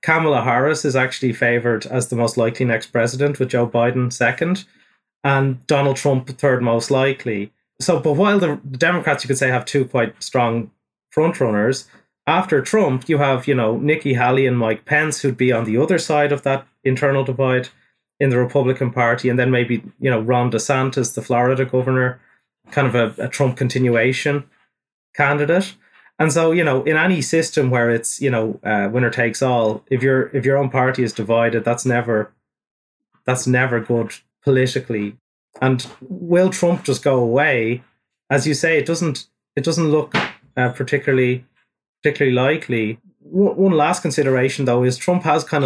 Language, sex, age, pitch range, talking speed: English, male, 30-49, 120-145 Hz, 170 wpm